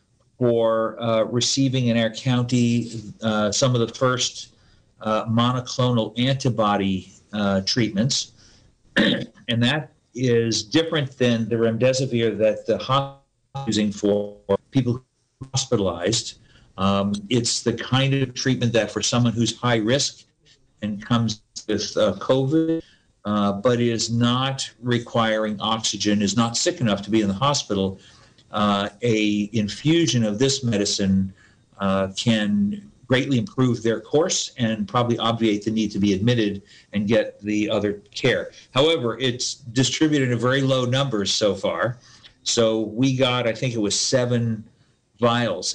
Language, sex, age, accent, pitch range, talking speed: English, male, 50-69, American, 105-130 Hz, 140 wpm